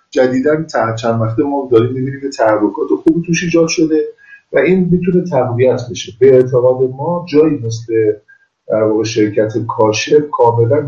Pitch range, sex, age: 120-185 Hz, male, 50-69